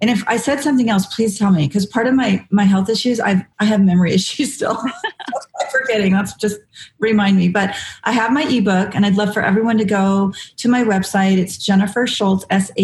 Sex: female